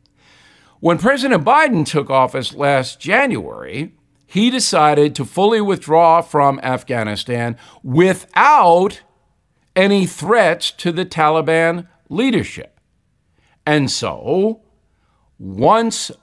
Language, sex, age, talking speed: English, male, 50-69, 90 wpm